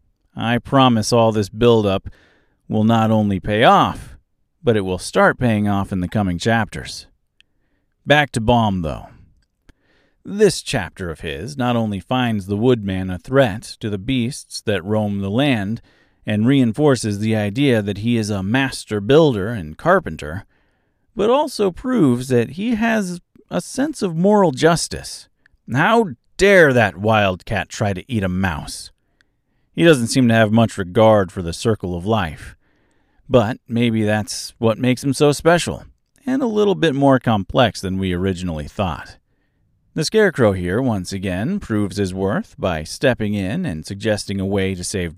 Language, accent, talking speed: English, American, 160 wpm